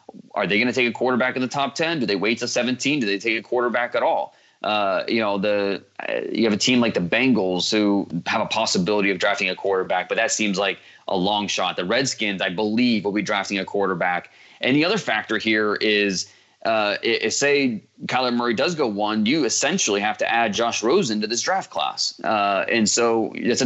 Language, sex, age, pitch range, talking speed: English, male, 20-39, 100-115 Hz, 225 wpm